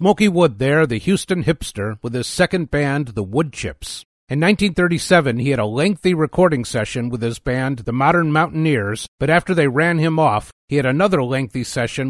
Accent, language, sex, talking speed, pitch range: American, English, male, 185 wpm, 120-160 Hz